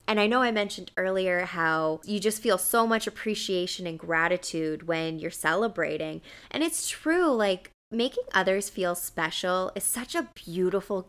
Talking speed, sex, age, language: 160 wpm, female, 20-39, English